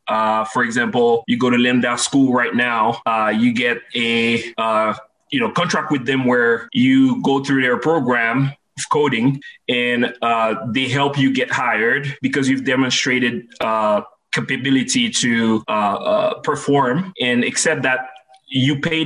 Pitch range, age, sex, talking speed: 120-180 Hz, 20-39, male, 155 wpm